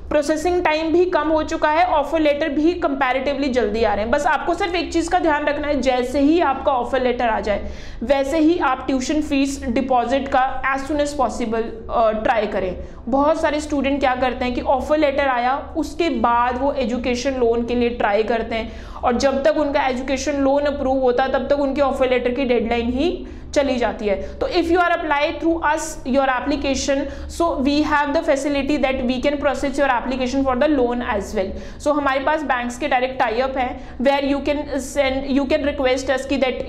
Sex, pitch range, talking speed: female, 255-305 Hz, 210 wpm